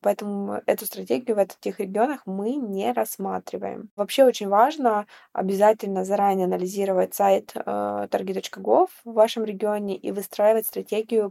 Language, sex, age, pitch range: Russian, female, 20-39, 200-245 Hz